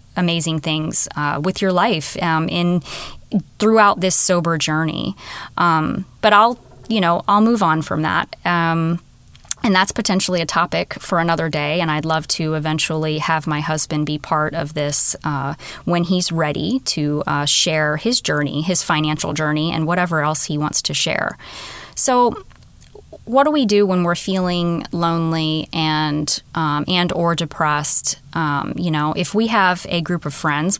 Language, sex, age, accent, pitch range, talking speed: English, female, 20-39, American, 155-195 Hz, 170 wpm